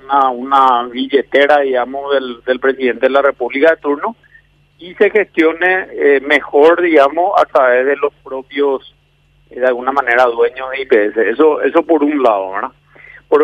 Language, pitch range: Spanish, 130-165 Hz